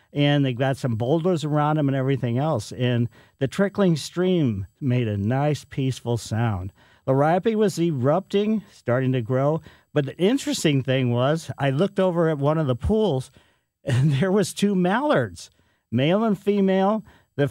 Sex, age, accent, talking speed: male, 50-69, American, 165 wpm